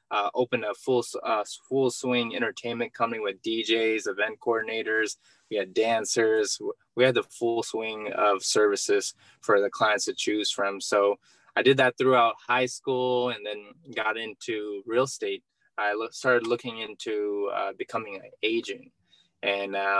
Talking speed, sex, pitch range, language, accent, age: 160 wpm, male, 110-175 Hz, English, American, 20-39